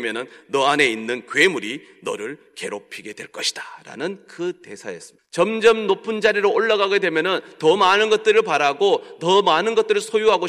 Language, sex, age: Korean, male, 30-49